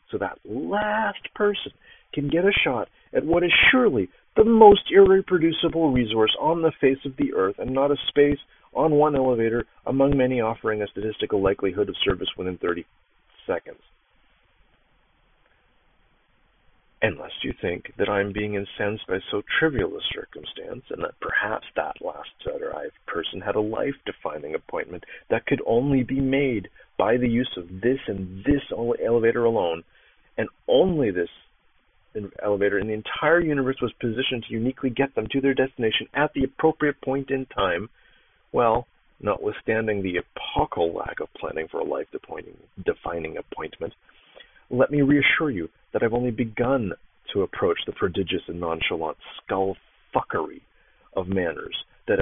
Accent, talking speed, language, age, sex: American, 150 wpm, English, 40-59, male